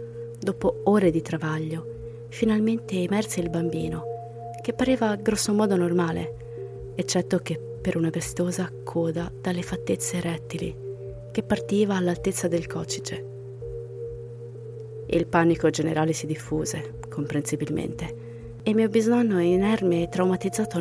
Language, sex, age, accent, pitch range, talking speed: Italian, female, 30-49, native, 130-180 Hz, 110 wpm